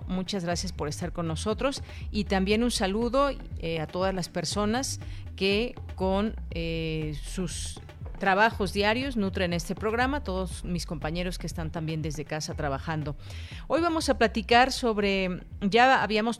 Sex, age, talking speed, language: female, 40-59, 145 wpm, Spanish